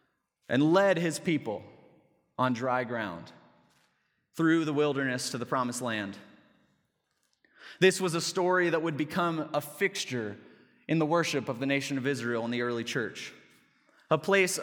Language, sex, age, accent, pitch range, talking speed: English, male, 20-39, American, 135-170 Hz, 150 wpm